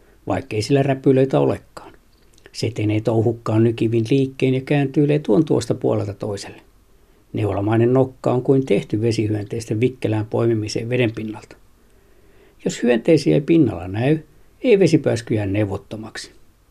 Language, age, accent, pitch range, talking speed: Finnish, 60-79, native, 110-140 Hz, 120 wpm